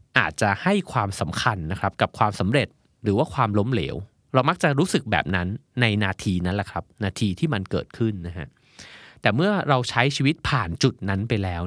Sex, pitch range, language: male, 95-125 Hz, Thai